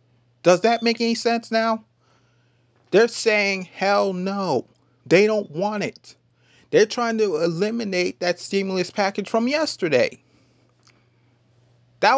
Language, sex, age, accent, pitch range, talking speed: English, male, 30-49, American, 120-200 Hz, 120 wpm